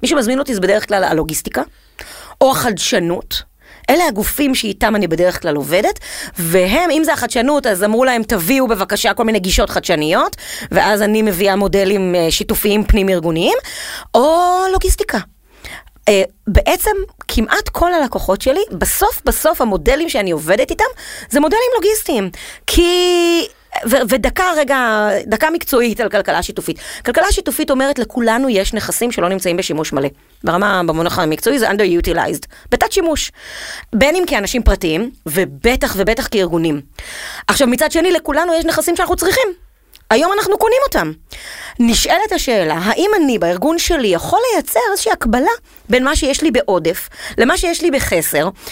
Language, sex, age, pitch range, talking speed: Hebrew, female, 30-49, 195-330 Hz, 140 wpm